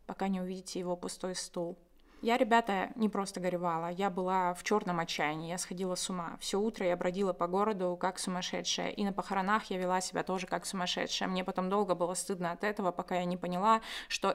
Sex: female